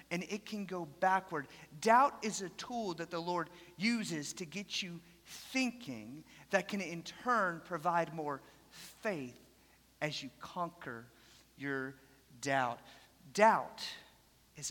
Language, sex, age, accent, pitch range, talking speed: English, male, 40-59, American, 160-200 Hz, 125 wpm